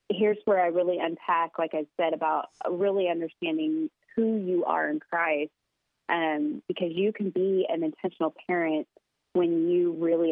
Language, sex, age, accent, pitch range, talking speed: English, female, 30-49, American, 155-190 Hz, 155 wpm